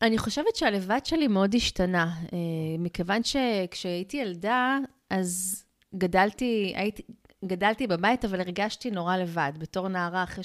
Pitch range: 190-245 Hz